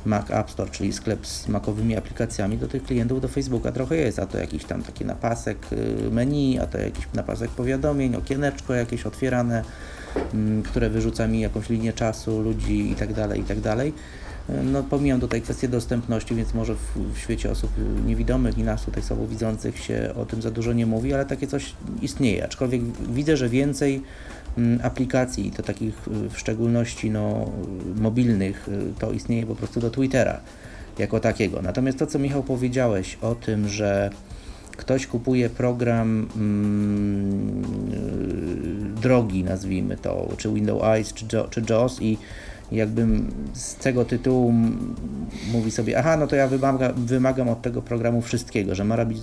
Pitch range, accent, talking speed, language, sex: 105-125 Hz, native, 160 wpm, Polish, male